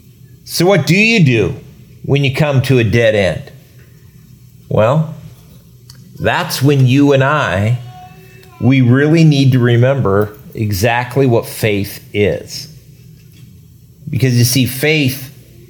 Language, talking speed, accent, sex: English, 120 wpm, American, male